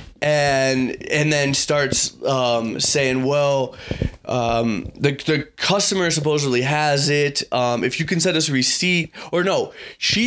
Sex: male